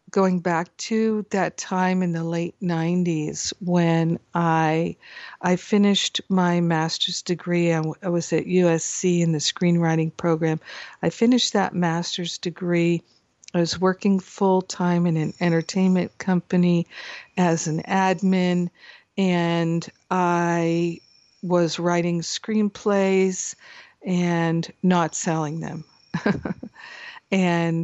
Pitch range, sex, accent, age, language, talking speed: 170-190 Hz, female, American, 50-69, English, 110 wpm